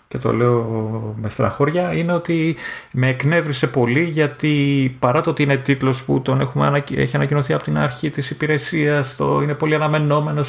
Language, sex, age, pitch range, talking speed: Greek, male, 30-49, 115-155 Hz, 175 wpm